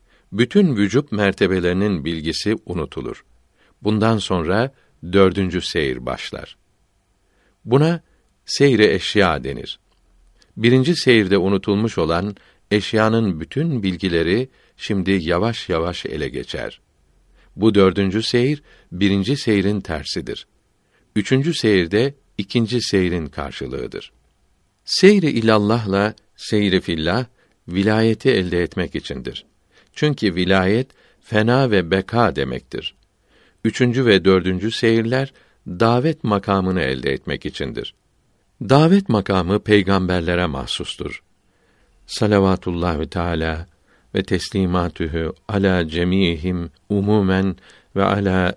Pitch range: 90-110 Hz